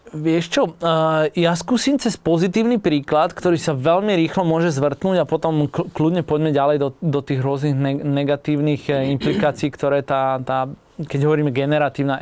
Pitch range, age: 140-165 Hz, 20-39